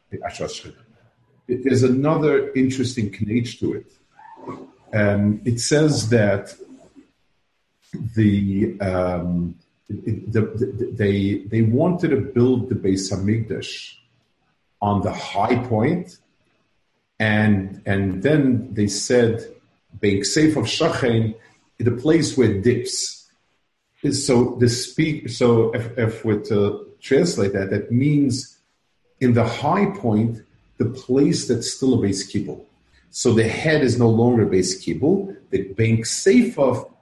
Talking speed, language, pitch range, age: 125 wpm, English, 105-130 Hz, 50-69